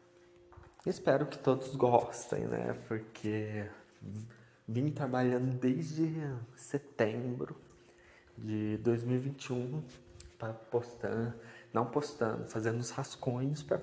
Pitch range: 105-125 Hz